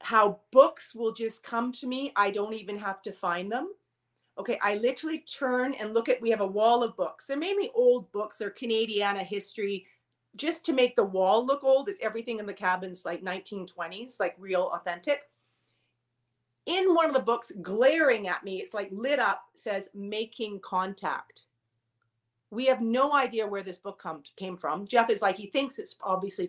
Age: 40-59